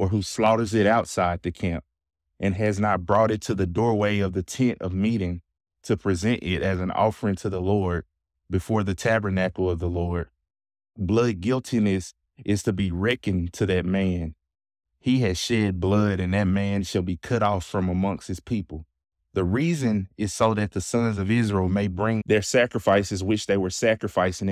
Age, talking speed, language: 20-39, 185 wpm, English